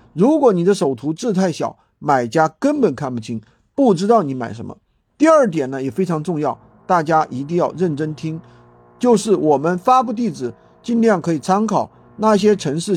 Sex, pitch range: male, 135-195 Hz